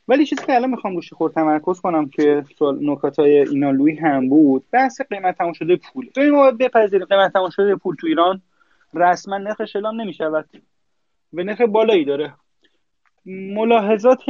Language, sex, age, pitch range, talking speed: Persian, male, 30-49, 140-205 Hz, 145 wpm